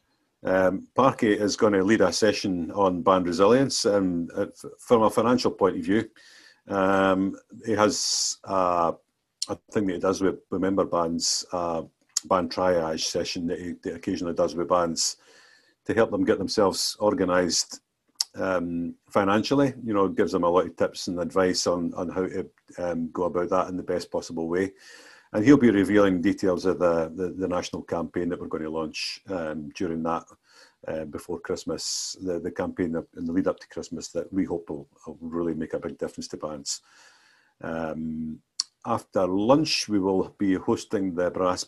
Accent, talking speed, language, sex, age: British, 180 wpm, English, male, 50-69